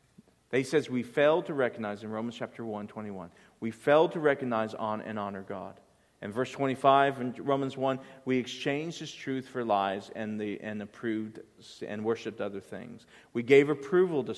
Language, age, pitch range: English, 40-59, 110-135 Hz